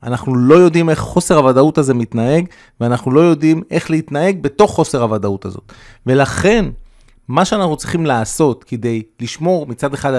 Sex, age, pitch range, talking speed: male, 30-49, 120-150 Hz, 155 wpm